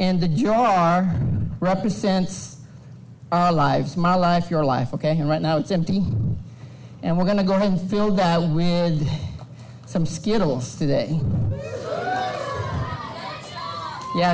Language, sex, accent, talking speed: English, male, American, 125 wpm